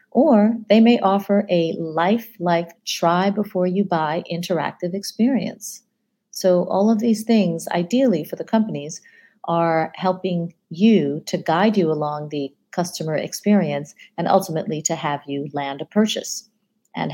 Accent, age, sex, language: American, 40-59, female, English